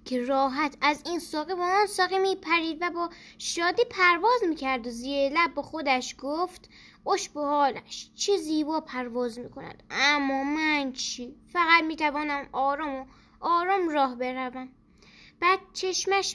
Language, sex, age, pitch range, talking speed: Persian, female, 10-29, 250-335 Hz, 140 wpm